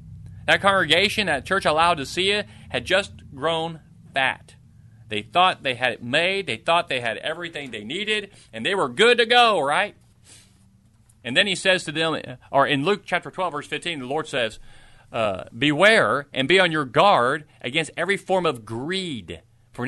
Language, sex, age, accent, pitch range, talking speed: English, male, 40-59, American, 115-165 Hz, 185 wpm